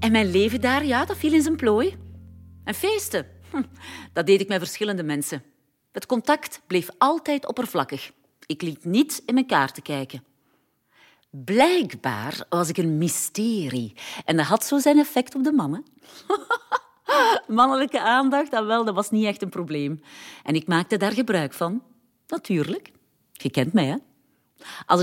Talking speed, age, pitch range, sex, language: 160 wpm, 40-59, 155-255 Hz, female, Dutch